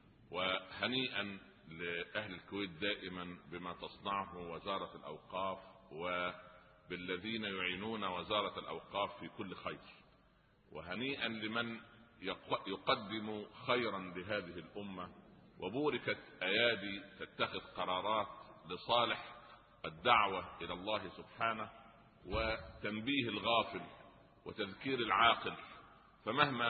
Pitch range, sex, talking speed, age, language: 95-115 Hz, male, 80 wpm, 50-69, Arabic